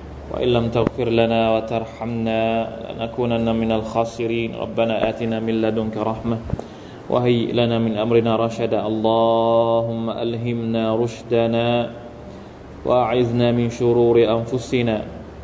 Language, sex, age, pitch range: Thai, male, 20-39, 115-125 Hz